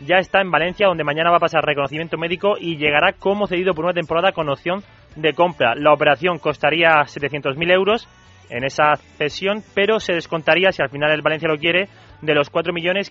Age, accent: 30-49, Spanish